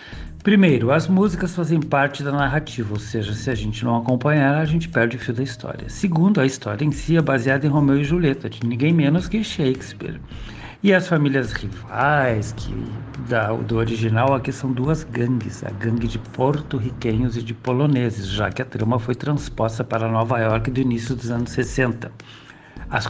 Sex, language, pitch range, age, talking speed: male, Portuguese, 115-140 Hz, 60-79, 180 wpm